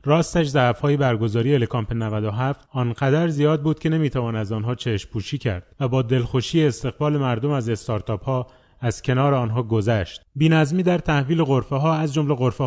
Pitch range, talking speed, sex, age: 125-155 Hz, 160 wpm, male, 30-49